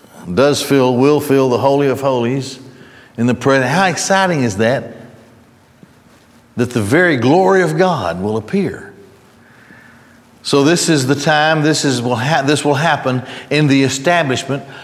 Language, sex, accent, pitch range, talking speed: English, male, American, 125-160 Hz, 140 wpm